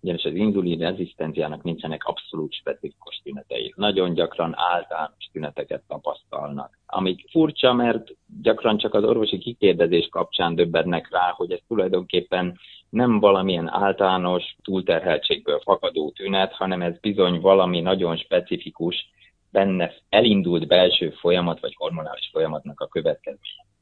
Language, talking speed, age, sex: Hungarian, 120 wpm, 30-49, male